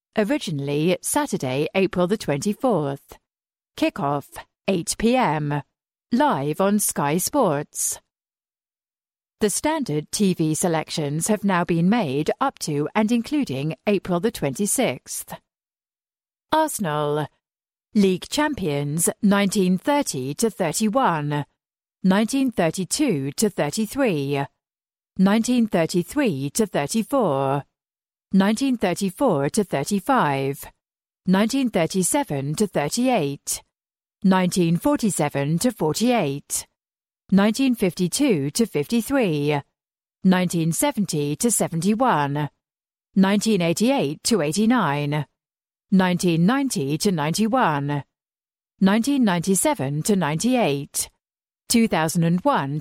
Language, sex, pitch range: English, female, 150-225 Hz